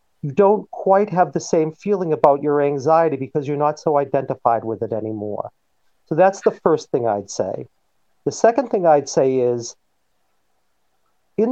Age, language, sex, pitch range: 50-69, English, male, 140-185 Hz